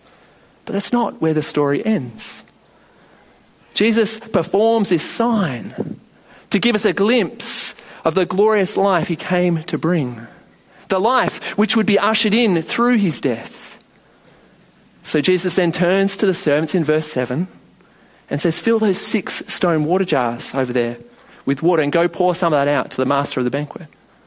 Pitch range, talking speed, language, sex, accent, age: 165-210 Hz, 170 wpm, English, male, Australian, 30-49